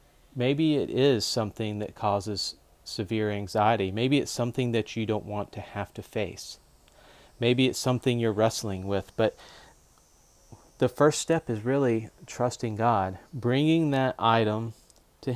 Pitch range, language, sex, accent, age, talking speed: 110-135 Hz, English, male, American, 40-59, 145 wpm